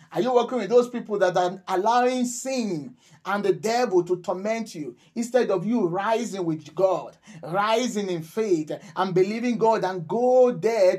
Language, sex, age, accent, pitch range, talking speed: English, male, 30-49, Nigerian, 170-225 Hz, 170 wpm